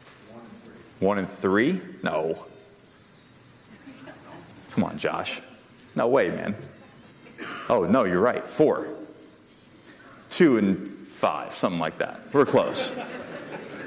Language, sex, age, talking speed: English, male, 30-49, 100 wpm